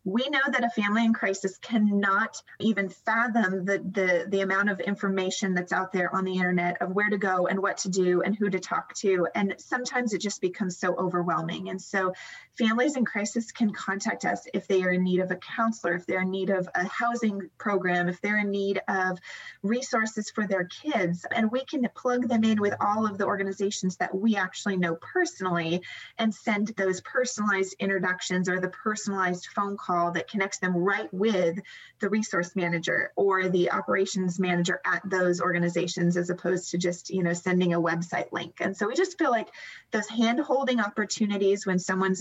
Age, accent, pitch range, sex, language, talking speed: 30-49, American, 180-220 Hz, female, English, 195 wpm